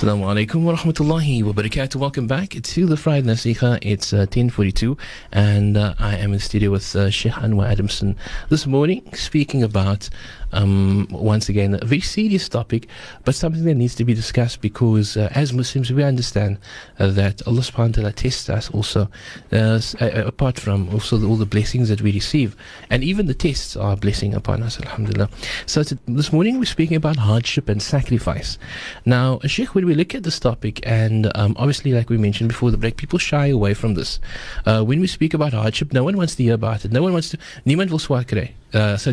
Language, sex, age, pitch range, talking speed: English, male, 30-49, 105-135 Hz, 200 wpm